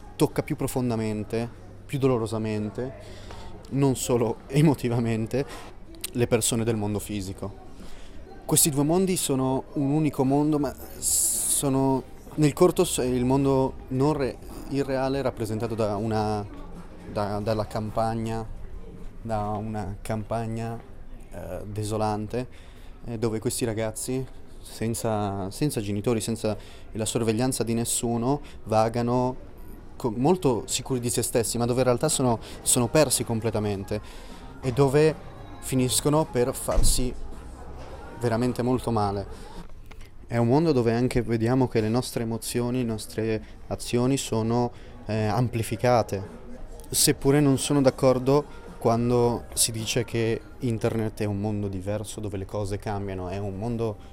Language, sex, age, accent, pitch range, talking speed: French, male, 20-39, Italian, 105-125 Hz, 120 wpm